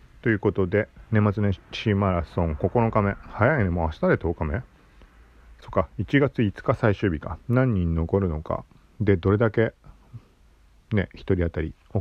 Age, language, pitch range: 40-59, Japanese, 85-125 Hz